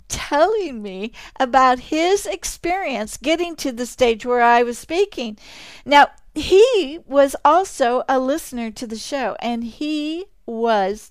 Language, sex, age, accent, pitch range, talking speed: English, female, 60-79, American, 220-300 Hz, 135 wpm